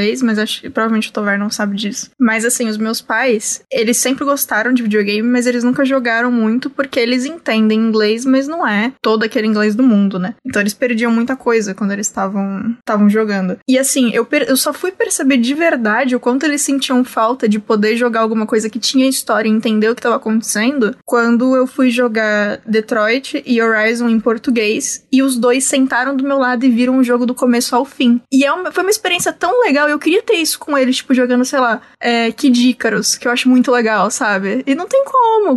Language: Portuguese